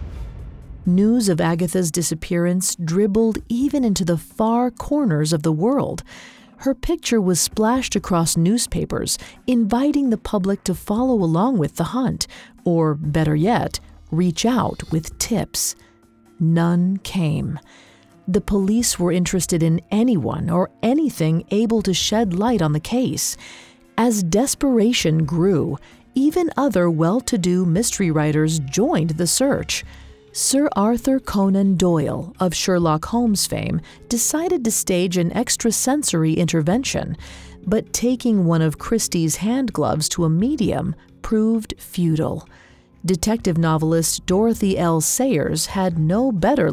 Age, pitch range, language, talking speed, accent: 40-59, 165-235 Hz, English, 125 wpm, American